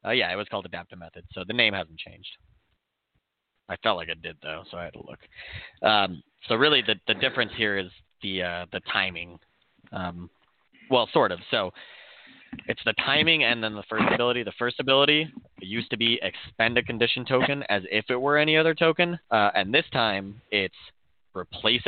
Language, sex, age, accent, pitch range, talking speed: English, male, 20-39, American, 95-125 Hz, 195 wpm